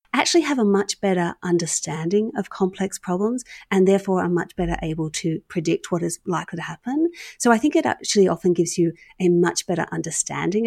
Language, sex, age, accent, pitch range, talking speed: English, female, 40-59, Australian, 165-205 Hz, 190 wpm